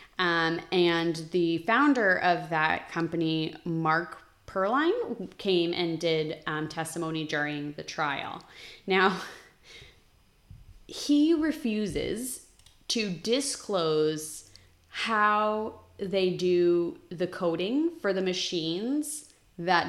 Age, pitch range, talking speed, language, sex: 20-39, 160-195 Hz, 95 wpm, English, female